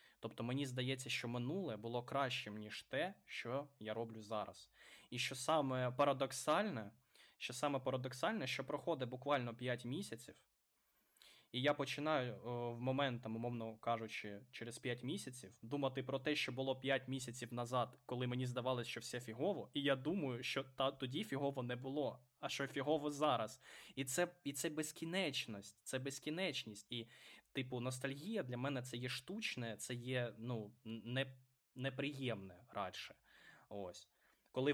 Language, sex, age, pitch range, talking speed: Ukrainian, male, 20-39, 115-135 Hz, 145 wpm